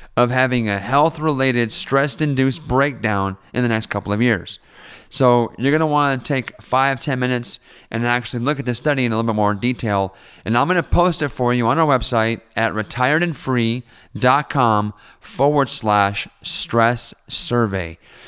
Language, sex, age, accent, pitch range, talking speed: English, male, 30-49, American, 110-140 Hz, 165 wpm